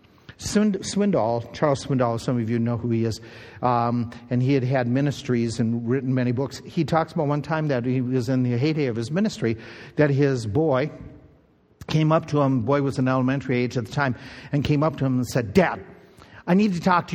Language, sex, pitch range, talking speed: English, male, 125-155 Hz, 220 wpm